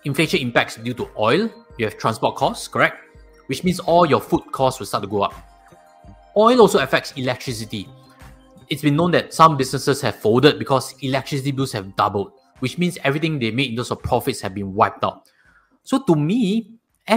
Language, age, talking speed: English, 20-39, 190 wpm